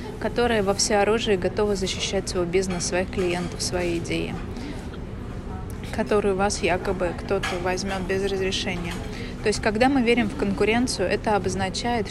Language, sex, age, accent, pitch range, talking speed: Russian, female, 20-39, native, 190-220 Hz, 135 wpm